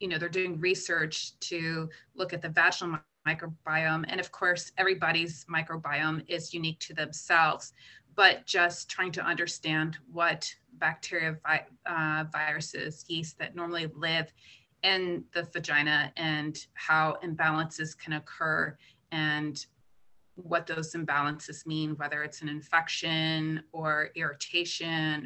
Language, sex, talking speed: English, female, 125 wpm